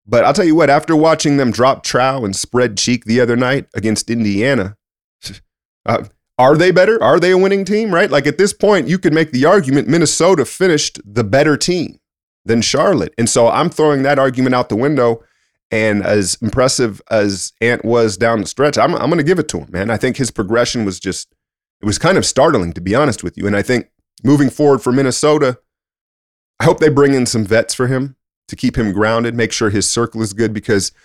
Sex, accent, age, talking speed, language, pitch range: male, American, 30-49, 220 wpm, English, 105-135 Hz